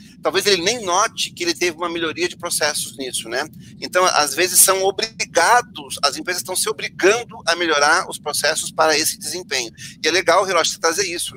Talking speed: 195 wpm